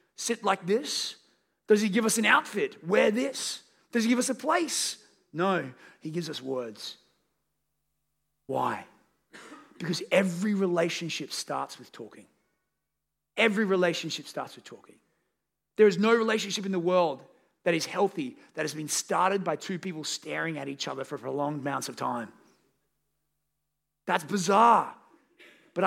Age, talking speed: 30-49, 145 wpm